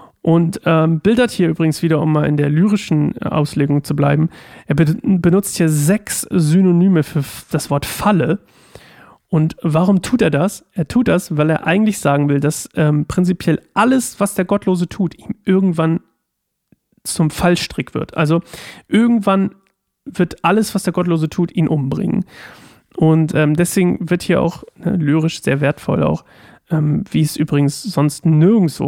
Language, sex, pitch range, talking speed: German, male, 150-185 Hz, 155 wpm